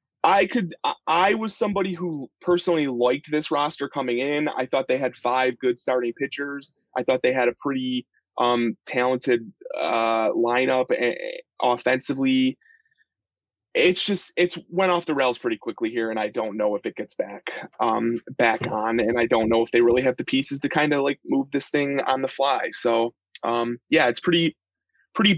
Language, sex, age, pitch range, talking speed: English, male, 20-39, 130-185 Hz, 185 wpm